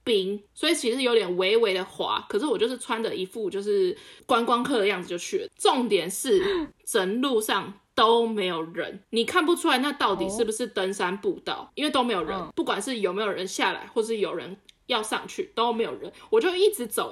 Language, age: Chinese, 20-39